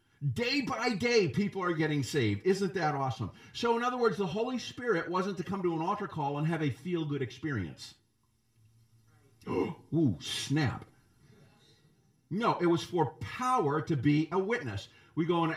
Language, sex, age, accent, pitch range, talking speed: English, male, 50-69, American, 130-200 Hz, 165 wpm